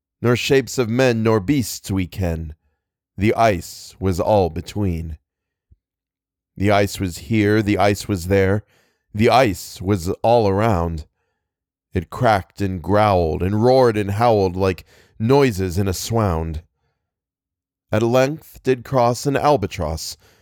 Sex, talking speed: male, 130 wpm